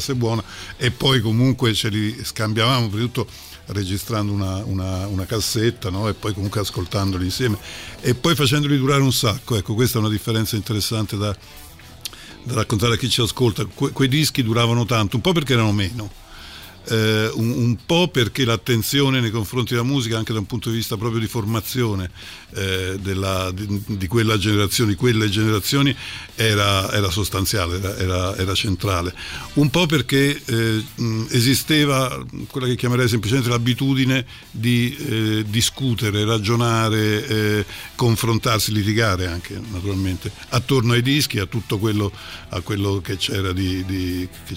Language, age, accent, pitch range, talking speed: Italian, 50-69, native, 100-125 Hz, 145 wpm